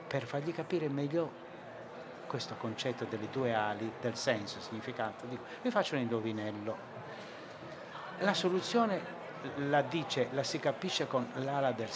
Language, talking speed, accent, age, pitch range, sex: Italian, 140 wpm, native, 60-79, 120-165 Hz, male